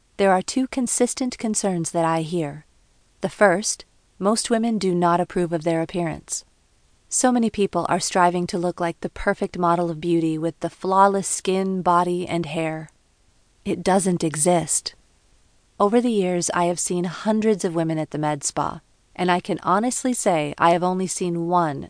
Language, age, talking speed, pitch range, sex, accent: English, 40-59, 175 wpm, 165-200 Hz, female, American